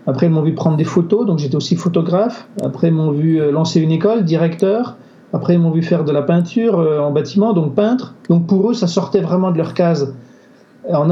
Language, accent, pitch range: French, French, 140-180 Hz